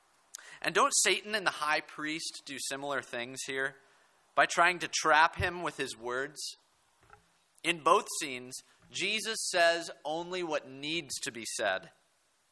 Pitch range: 140-180 Hz